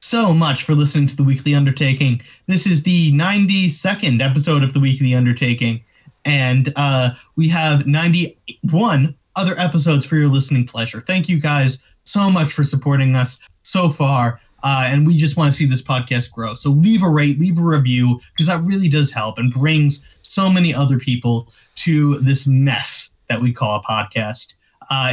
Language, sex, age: English, male, 20-39